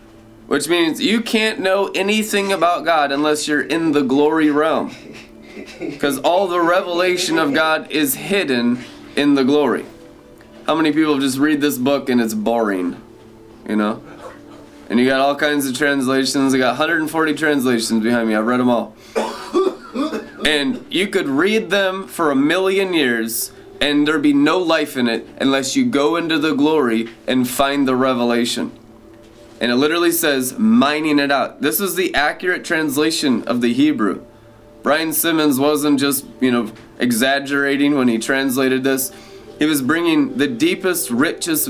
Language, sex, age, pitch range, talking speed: English, male, 20-39, 125-170 Hz, 160 wpm